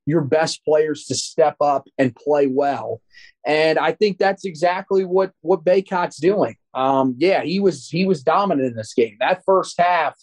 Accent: American